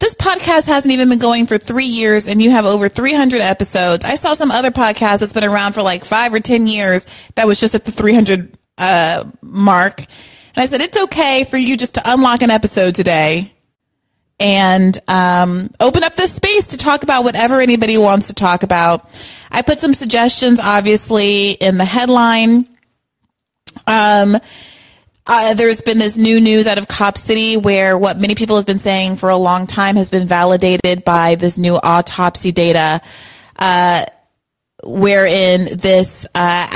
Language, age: English, 30-49